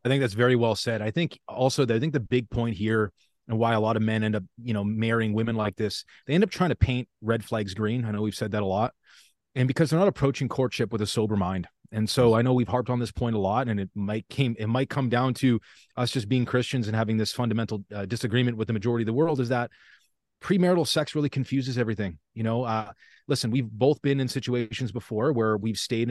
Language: English